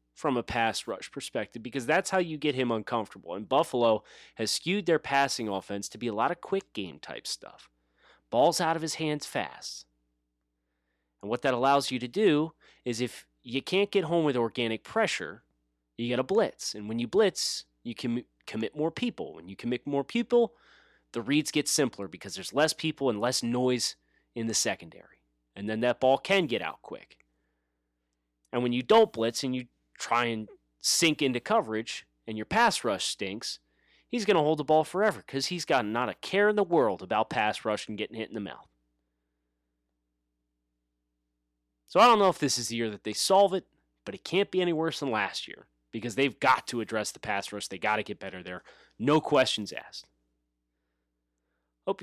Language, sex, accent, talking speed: English, male, American, 200 wpm